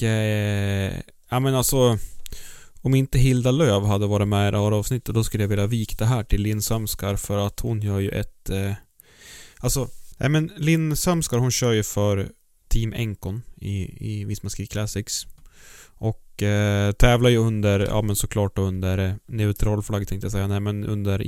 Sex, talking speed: male, 180 wpm